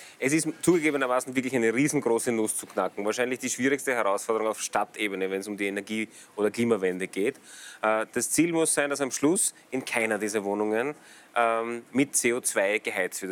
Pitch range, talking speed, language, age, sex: 115-140 Hz, 170 wpm, German, 30-49, male